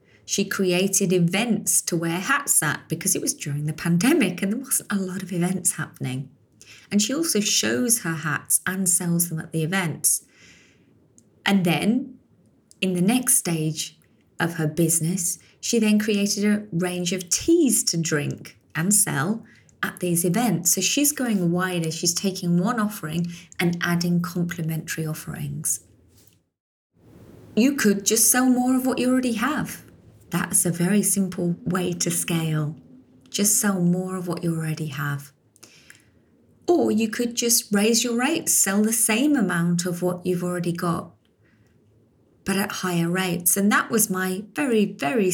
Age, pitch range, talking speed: 30-49, 165-205 Hz, 160 wpm